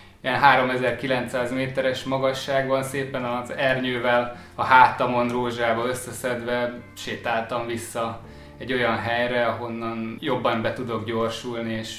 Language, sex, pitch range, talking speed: Hungarian, male, 115-130 Hz, 110 wpm